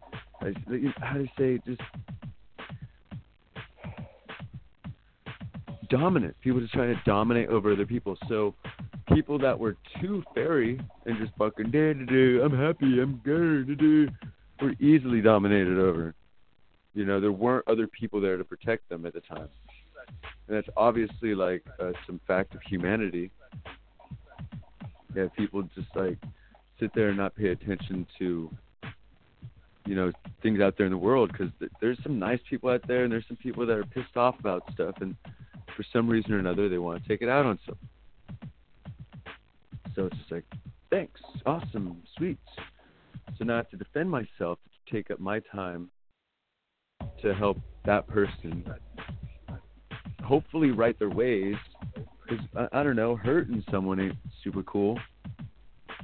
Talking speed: 150 wpm